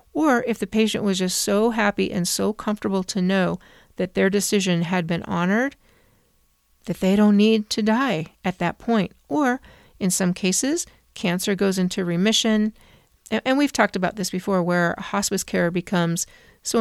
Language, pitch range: English, 175-200 Hz